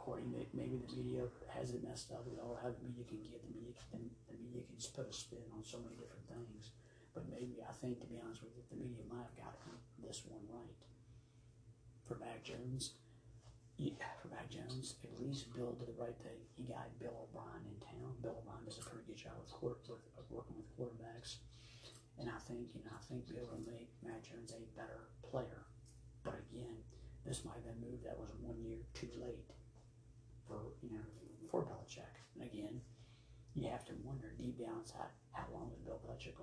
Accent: American